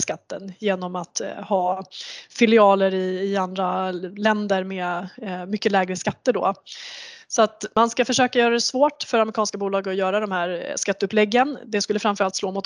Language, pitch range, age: Swedish, 195-225 Hz, 20-39